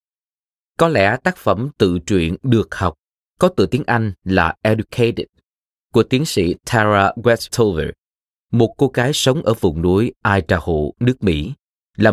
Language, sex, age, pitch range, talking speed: Vietnamese, male, 20-39, 85-115 Hz, 150 wpm